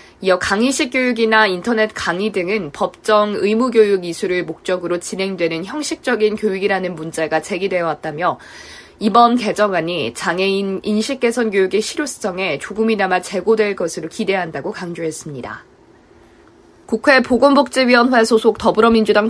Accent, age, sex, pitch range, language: native, 20-39, female, 185-230 Hz, Korean